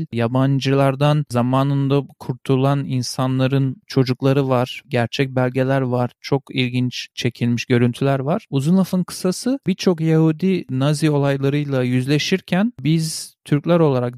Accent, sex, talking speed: native, male, 105 wpm